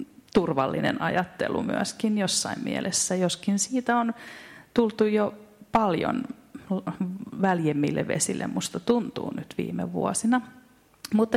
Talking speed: 100 wpm